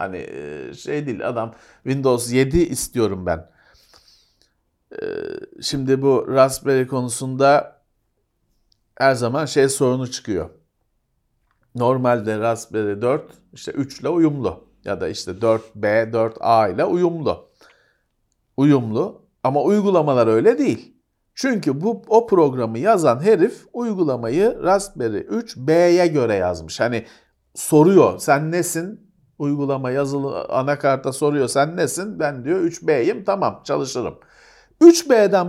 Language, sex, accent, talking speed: Turkish, male, native, 110 wpm